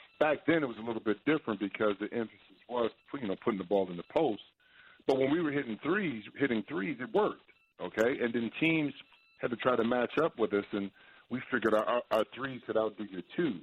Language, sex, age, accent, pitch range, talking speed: English, male, 40-59, American, 105-130 Hz, 230 wpm